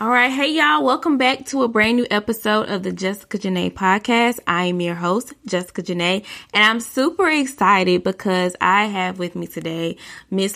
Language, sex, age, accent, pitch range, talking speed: English, female, 20-39, American, 180-230 Hz, 190 wpm